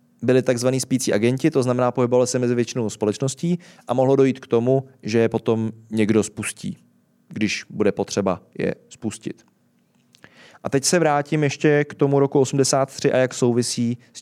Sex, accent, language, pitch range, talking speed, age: male, native, Czech, 120-150 Hz, 165 wpm, 20-39